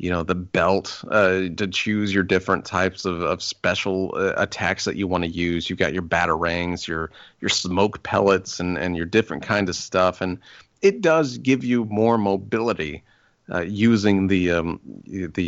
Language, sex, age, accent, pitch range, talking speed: English, male, 30-49, American, 95-115 Hz, 180 wpm